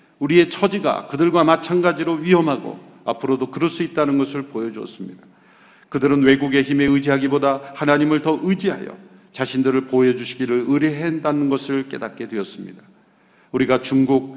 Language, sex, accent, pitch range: Korean, male, native, 120-150 Hz